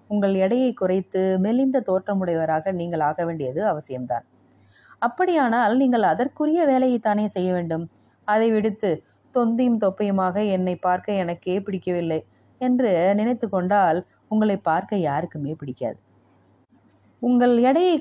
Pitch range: 155-220 Hz